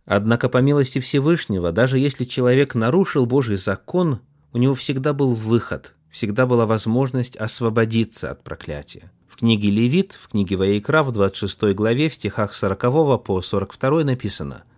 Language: Russian